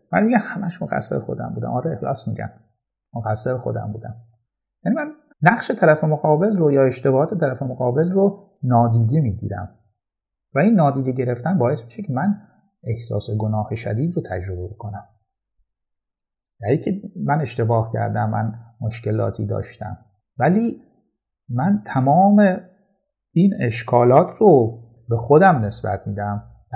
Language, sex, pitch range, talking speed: Persian, male, 110-155 Hz, 135 wpm